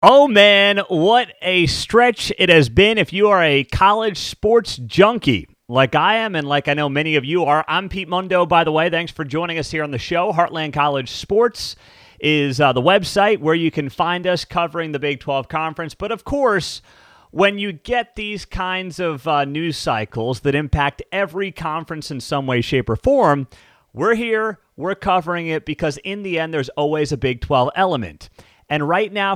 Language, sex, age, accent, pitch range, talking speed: English, male, 30-49, American, 140-185 Hz, 200 wpm